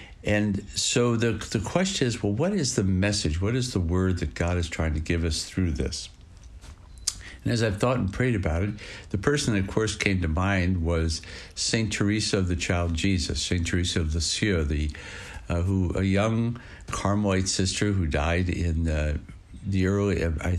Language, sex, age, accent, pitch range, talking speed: English, male, 60-79, American, 85-105 Hz, 190 wpm